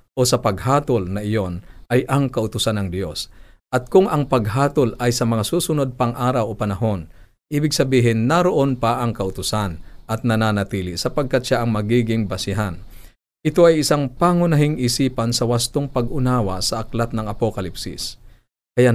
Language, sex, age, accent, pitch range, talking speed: Filipino, male, 50-69, native, 105-130 Hz, 150 wpm